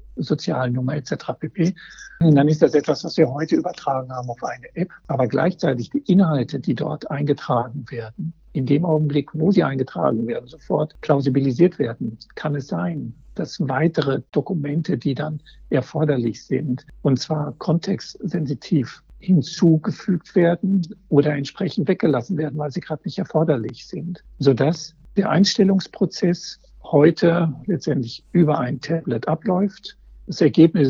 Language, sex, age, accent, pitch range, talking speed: German, male, 60-79, German, 135-170 Hz, 140 wpm